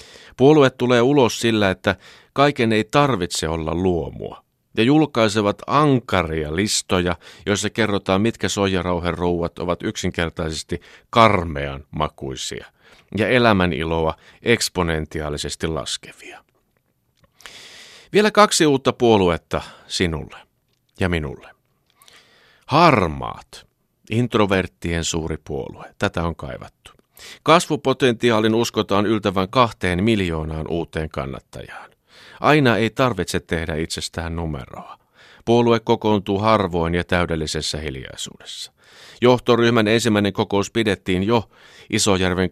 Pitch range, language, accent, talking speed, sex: 85-115 Hz, Finnish, native, 95 wpm, male